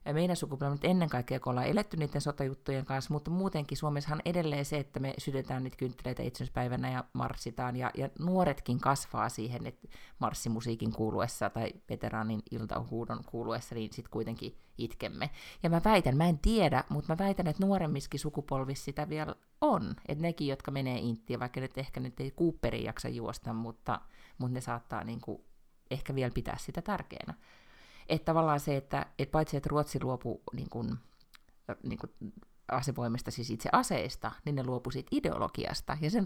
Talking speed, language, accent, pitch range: 170 wpm, Finnish, native, 120-150 Hz